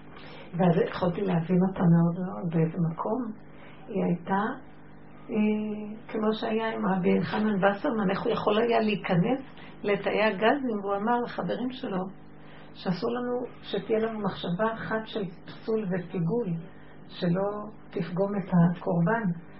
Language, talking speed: Hebrew, 125 wpm